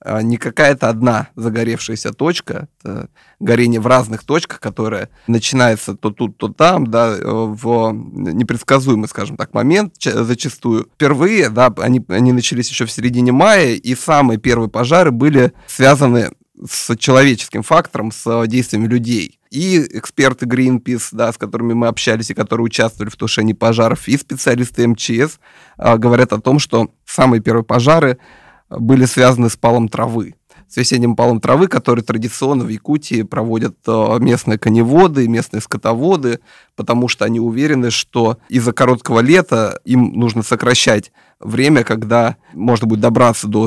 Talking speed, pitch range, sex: 140 wpm, 115-130 Hz, male